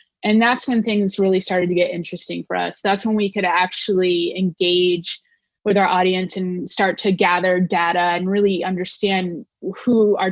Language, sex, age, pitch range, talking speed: English, female, 20-39, 185-215 Hz, 175 wpm